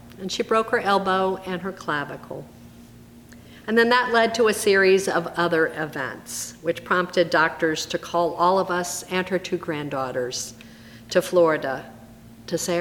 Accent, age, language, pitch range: American, 50-69, English, 115-180 Hz